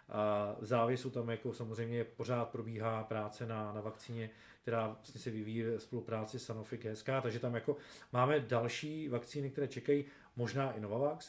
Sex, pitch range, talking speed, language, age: male, 115-140 Hz, 155 wpm, Czech, 40-59